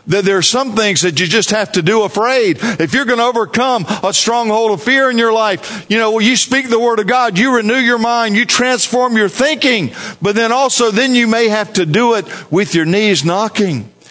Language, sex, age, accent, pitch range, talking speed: English, male, 50-69, American, 185-230 Hz, 230 wpm